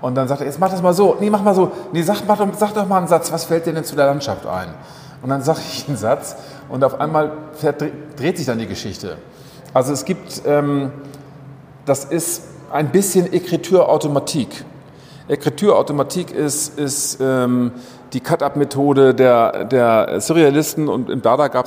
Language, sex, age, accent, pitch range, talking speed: German, male, 40-59, German, 135-165 Hz, 175 wpm